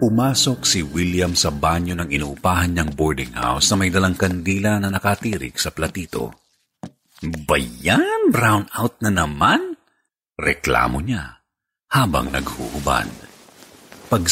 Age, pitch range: 50-69, 80-110 Hz